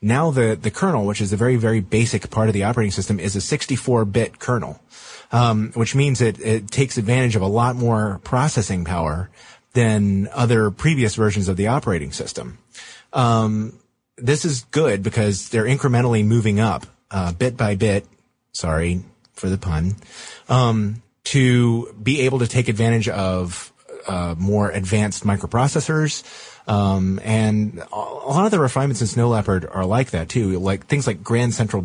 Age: 30-49